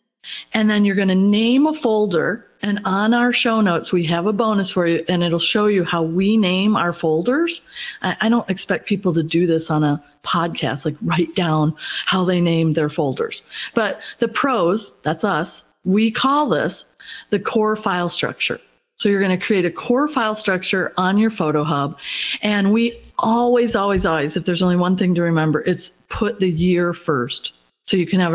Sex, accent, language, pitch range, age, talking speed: female, American, English, 165-215 Hz, 40-59, 195 wpm